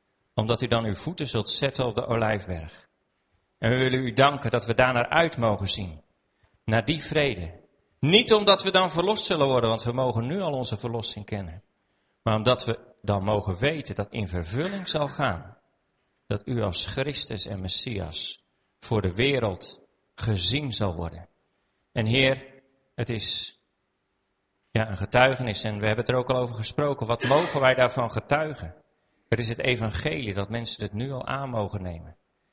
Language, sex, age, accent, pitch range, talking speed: French, male, 40-59, Dutch, 100-135 Hz, 175 wpm